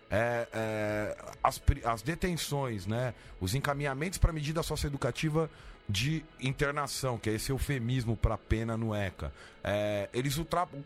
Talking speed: 135 wpm